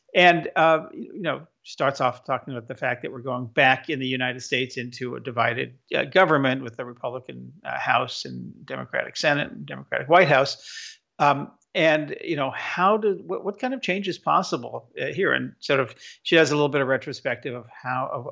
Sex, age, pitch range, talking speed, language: male, 50-69, 125-145 Hz, 205 wpm, English